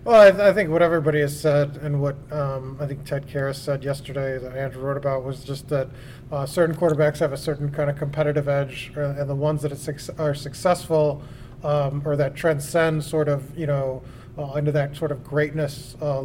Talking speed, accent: 205 wpm, American